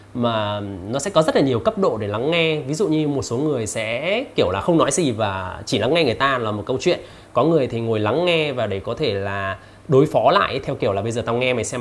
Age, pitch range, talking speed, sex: 20-39, 105-140 Hz, 290 wpm, male